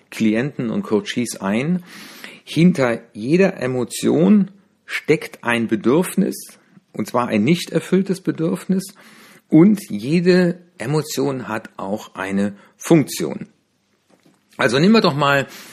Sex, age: male, 60-79